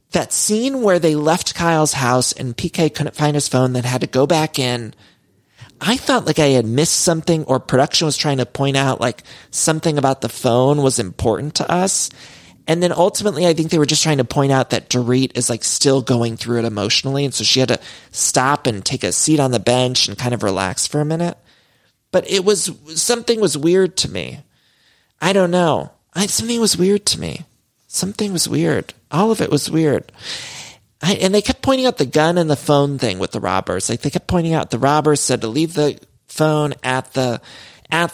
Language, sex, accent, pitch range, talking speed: English, male, American, 125-165 Hz, 215 wpm